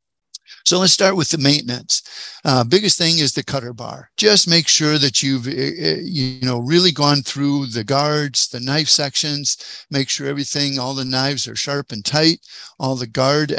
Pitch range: 125-150 Hz